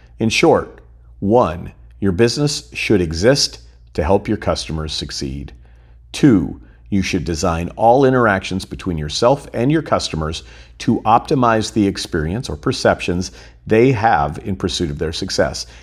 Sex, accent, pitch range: male, American, 65-105 Hz